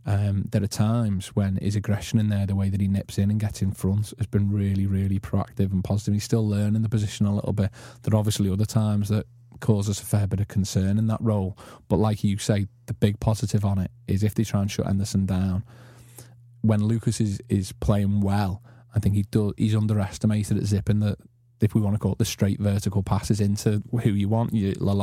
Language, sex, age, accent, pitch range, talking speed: English, male, 20-39, British, 100-110 Hz, 235 wpm